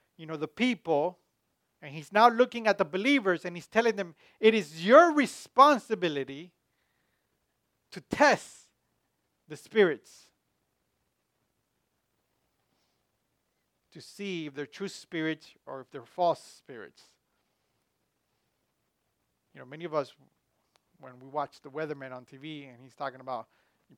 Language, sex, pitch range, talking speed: English, male, 140-195 Hz, 130 wpm